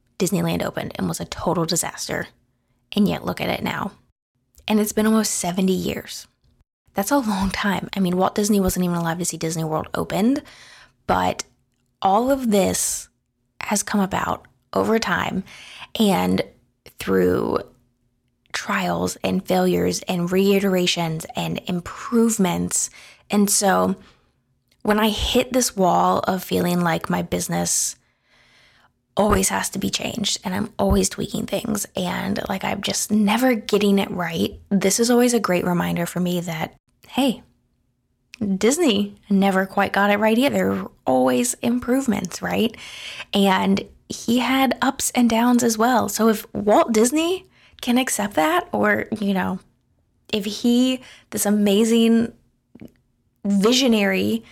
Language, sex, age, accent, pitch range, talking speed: English, female, 20-39, American, 170-220 Hz, 140 wpm